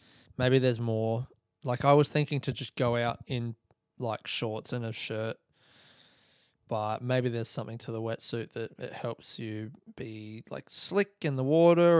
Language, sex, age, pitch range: English, male, 20-39, 120-140 Hz